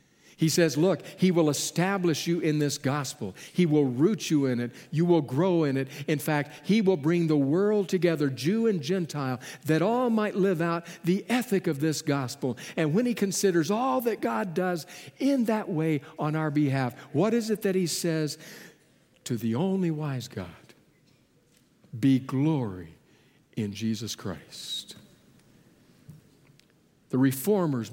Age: 60-79